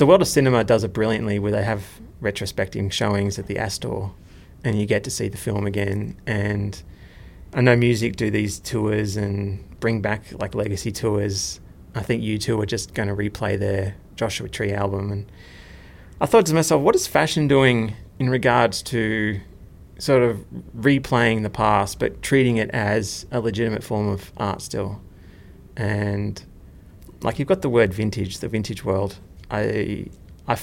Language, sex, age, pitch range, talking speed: English, male, 30-49, 100-115 Hz, 170 wpm